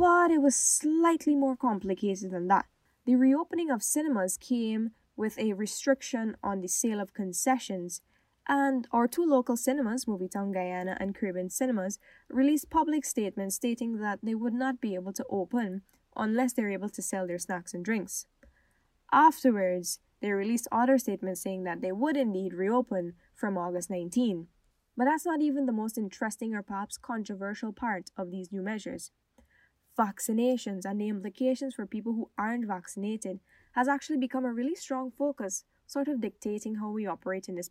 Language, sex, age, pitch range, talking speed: English, female, 10-29, 195-255 Hz, 170 wpm